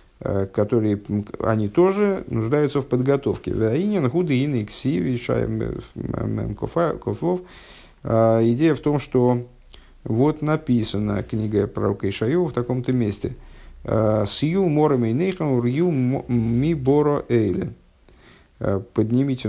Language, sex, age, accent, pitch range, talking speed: Russian, male, 50-69, native, 105-140 Hz, 60 wpm